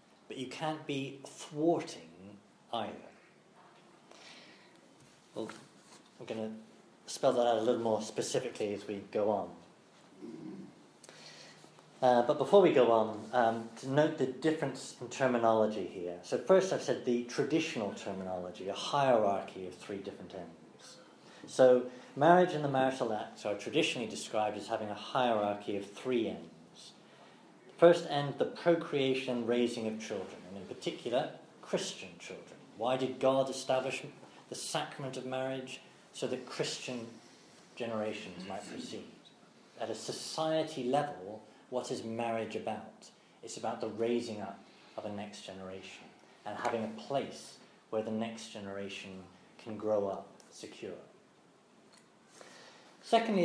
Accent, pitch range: British, 105-135 Hz